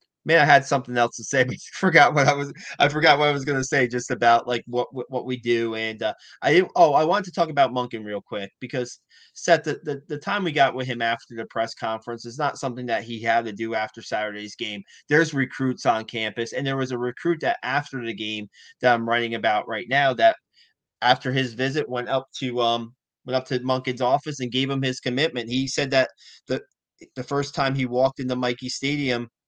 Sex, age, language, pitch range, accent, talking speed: male, 30-49, English, 115-135 Hz, American, 230 wpm